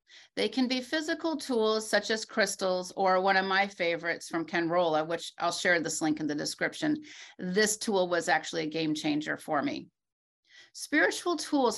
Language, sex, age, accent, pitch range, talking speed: English, female, 40-59, American, 180-210 Hz, 175 wpm